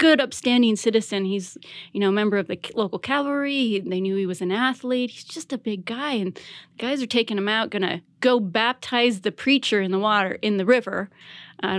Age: 30-49